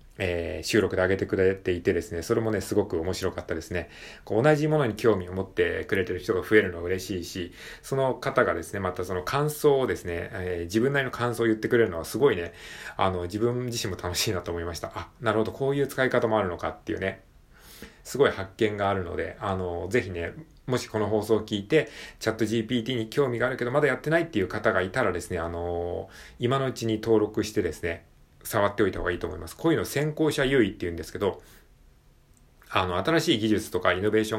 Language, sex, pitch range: Japanese, male, 90-120 Hz